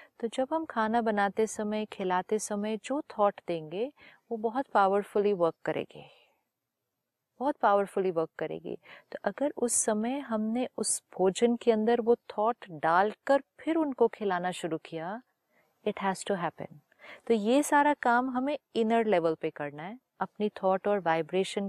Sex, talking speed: female, 150 wpm